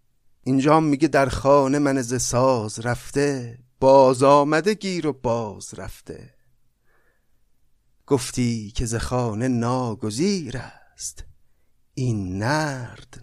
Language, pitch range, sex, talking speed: Persian, 110-140 Hz, male, 100 wpm